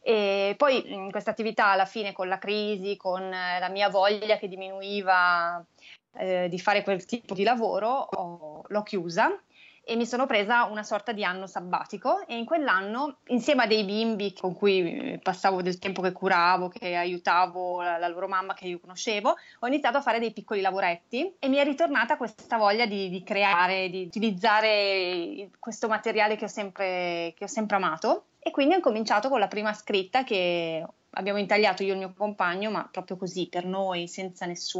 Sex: female